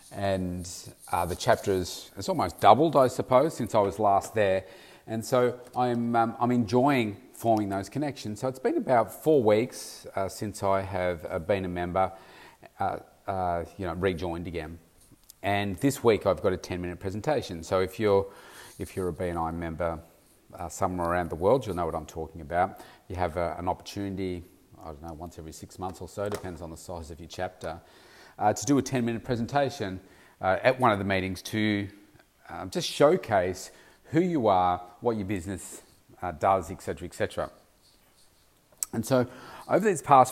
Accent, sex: Australian, male